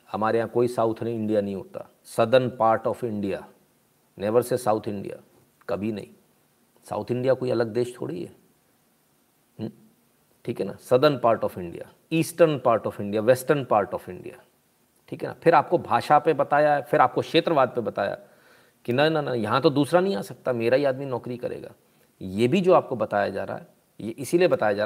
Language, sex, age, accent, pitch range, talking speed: Hindi, male, 40-59, native, 115-140 Hz, 195 wpm